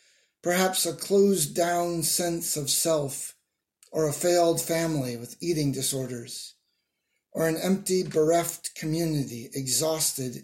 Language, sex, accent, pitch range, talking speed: English, male, American, 145-185 Hz, 110 wpm